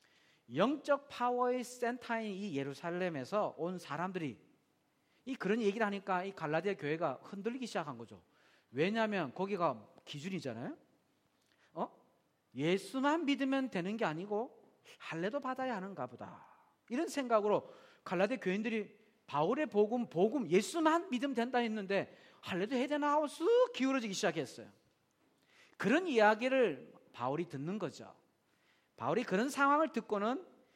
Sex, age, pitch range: male, 40-59, 175-250 Hz